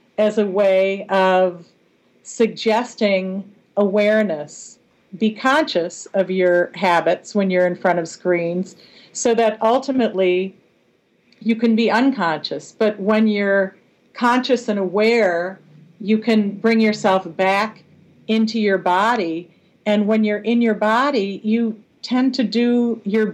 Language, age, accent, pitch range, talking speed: English, 50-69, American, 185-220 Hz, 125 wpm